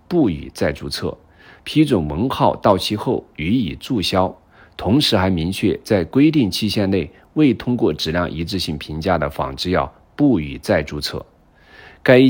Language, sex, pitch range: Chinese, male, 80-110 Hz